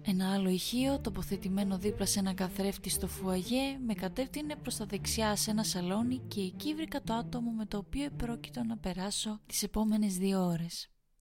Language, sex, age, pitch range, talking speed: Greek, female, 20-39, 190-245 Hz, 175 wpm